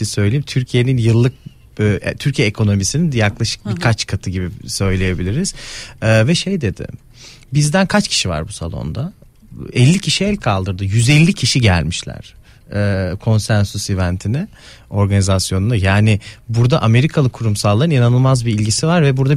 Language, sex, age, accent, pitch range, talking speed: Turkish, male, 40-59, native, 100-130 Hz, 120 wpm